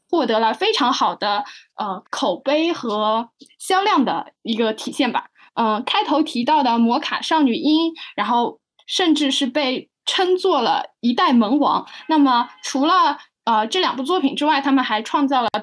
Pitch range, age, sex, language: 240-320 Hz, 10-29, female, Chinese